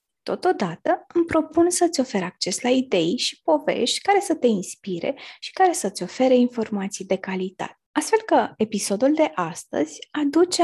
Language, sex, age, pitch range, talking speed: Romanian, female, 20-39, 200-280 Hz, 150 wpm